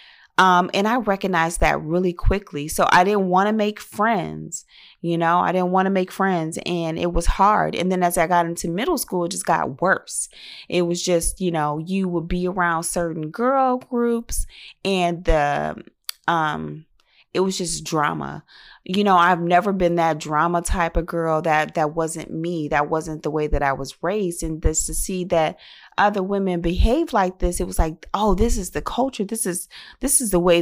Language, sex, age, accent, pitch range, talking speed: English, female, 30-49, American, 160-190 Hz, 200 wpm